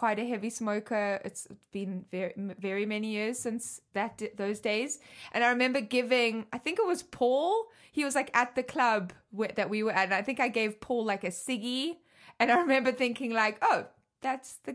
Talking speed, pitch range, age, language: 210 wpm, 195-255 Hz, 20-39, English